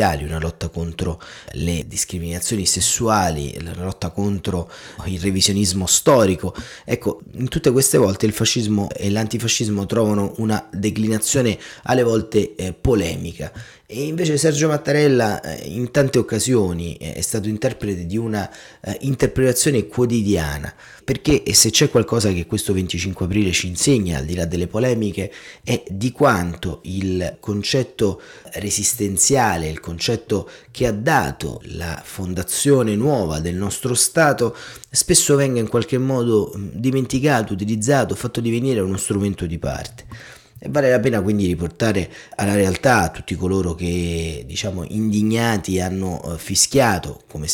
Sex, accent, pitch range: male, native, 90-120 Hz